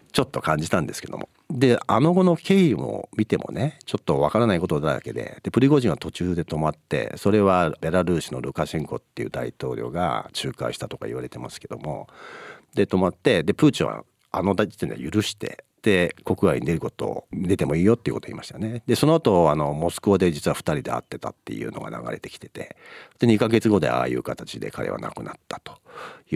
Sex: male